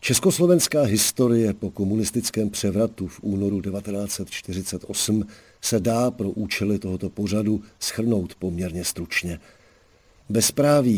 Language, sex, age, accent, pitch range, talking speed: Czech, male, 50-69, native, 95-115 Hz, 100 wpm